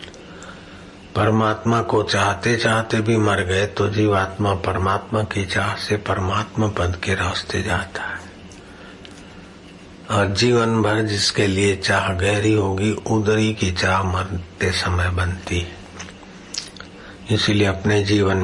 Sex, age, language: male, 60-79, Hindi